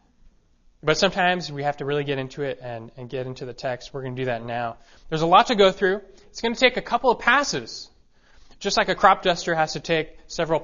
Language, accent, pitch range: English, American, 130-175 Hz